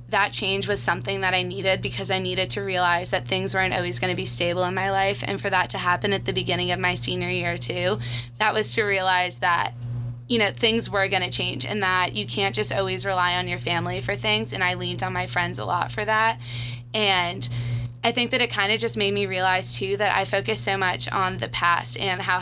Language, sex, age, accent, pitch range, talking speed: English, female, 20-39, American, 120-195 Hz, 245 wpm